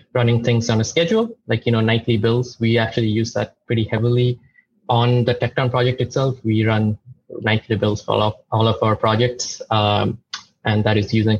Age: 20-39